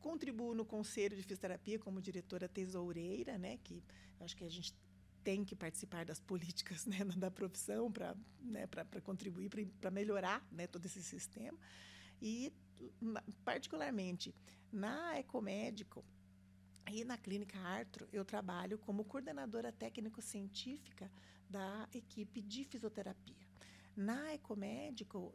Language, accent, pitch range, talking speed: Portuguese, Brazilian, 170-215 Hz, 125 wpm